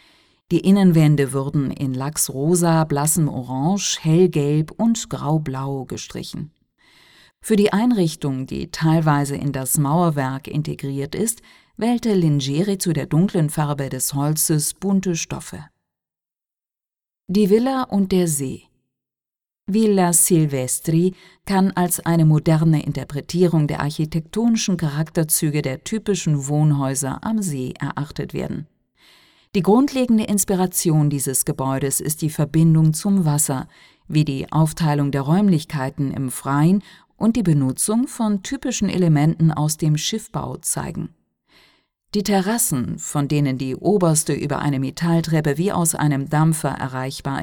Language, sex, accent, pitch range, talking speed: Italian, female, German, 145-190 Hz, 120 wpm